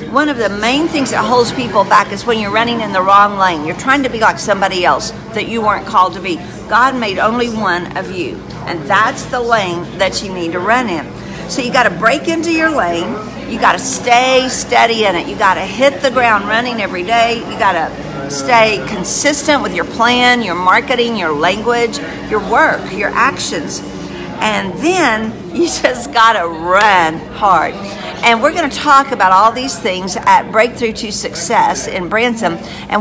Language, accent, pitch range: English, American, 195-250 Hz